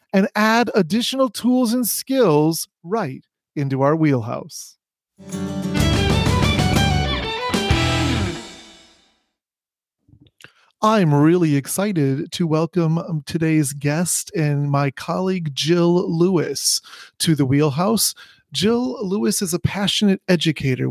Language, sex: English, male